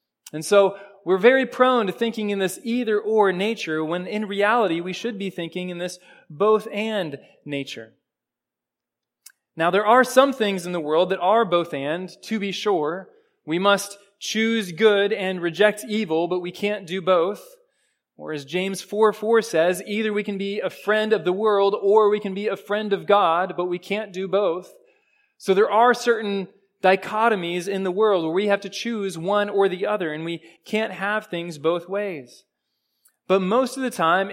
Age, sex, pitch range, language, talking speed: 20-39, male, 185-230 Hz, English, 180 wpm